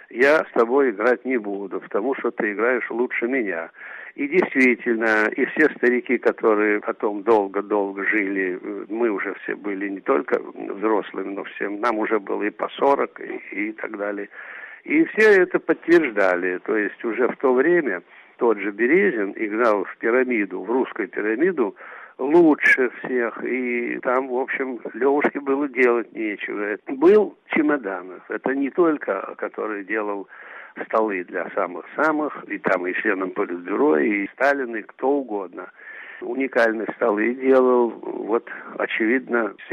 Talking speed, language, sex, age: 145 wpm, Russian, male, 60-79